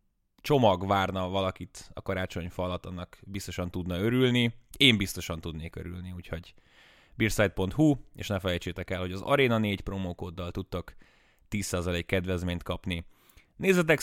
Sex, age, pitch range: male, 20-39, 90-110 Hz